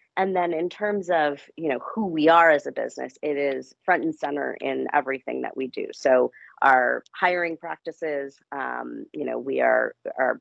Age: 30-49